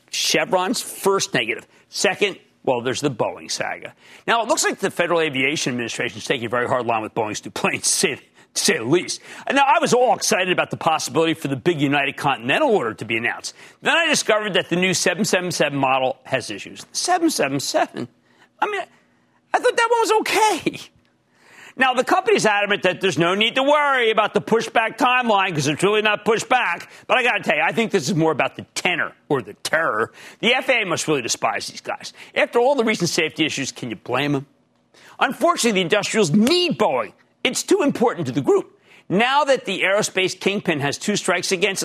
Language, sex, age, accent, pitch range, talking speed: English, male, 50-69, American, 160-250 Hz, 200 wpm